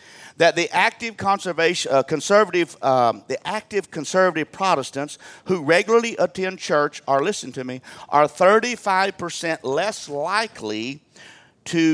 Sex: male